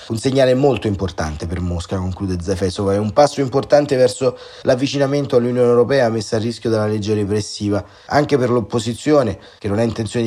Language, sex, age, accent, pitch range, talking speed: Italian, male, 30-49, native, 105-125 Hz, 170 wpm